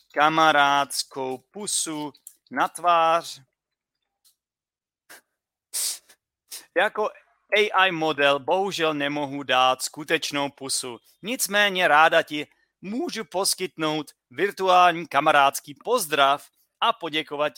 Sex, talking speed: male, 80 wpm